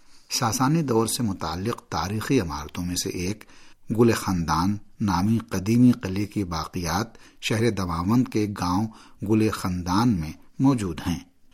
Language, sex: Urdu, male